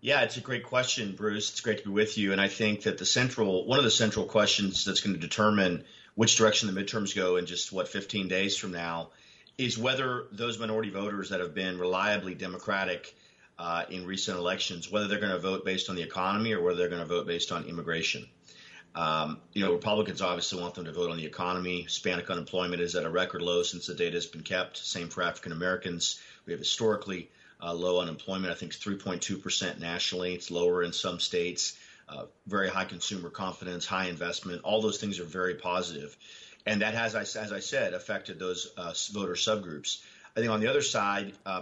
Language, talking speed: English, 210 wpm